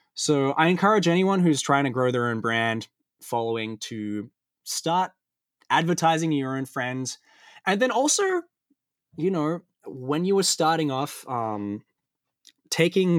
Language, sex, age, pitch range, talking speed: English, male, 20-39, 115-160 Hz, 135 wpm